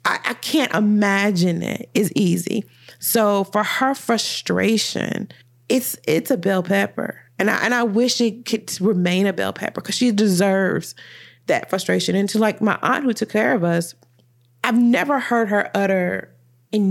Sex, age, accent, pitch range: female, 30-49, American, 175-215 Hz